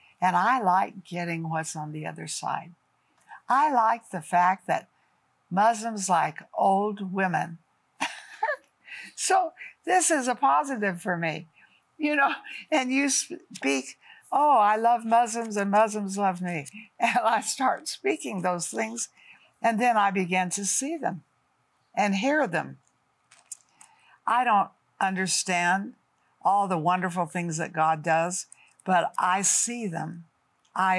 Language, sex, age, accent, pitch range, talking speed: English, female, 60-79, American, 180-235 Hz, 135 wpm